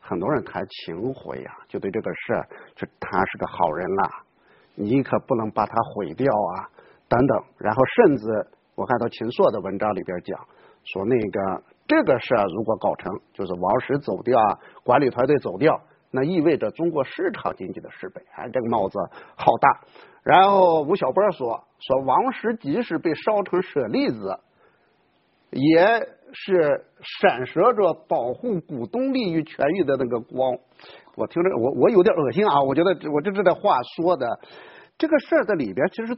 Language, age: Chinese, 50-69